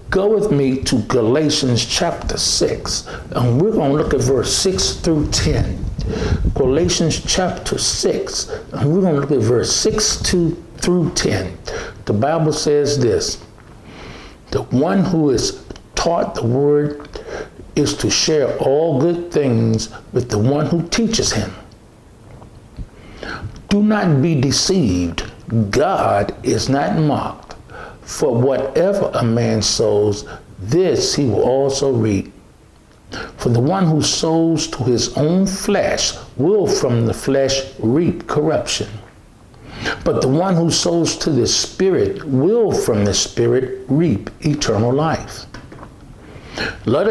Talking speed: 130 wpm